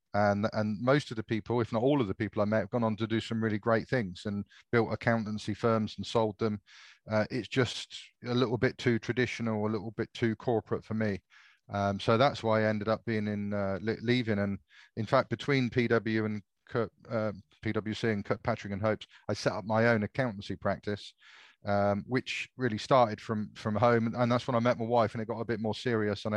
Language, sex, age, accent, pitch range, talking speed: English, male, 30-49, British, 105-115 Hz, 220 wpm